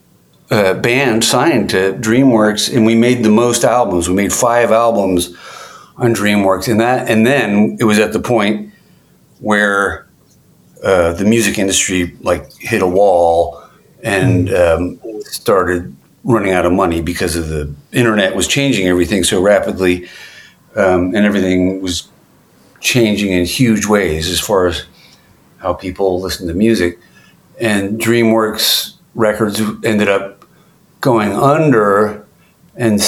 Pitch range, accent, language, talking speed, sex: 90-115 Hz, American, English, 135 wpm, male